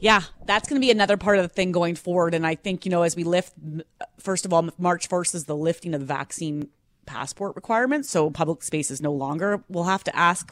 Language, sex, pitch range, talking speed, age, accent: English, female, 165-205 Hz, 235 wpm, 30-49, American